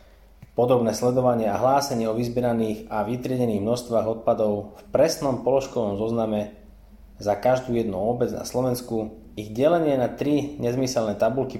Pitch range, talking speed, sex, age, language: 100-125 Hz, 135 wpm, male, 20-39, Slovak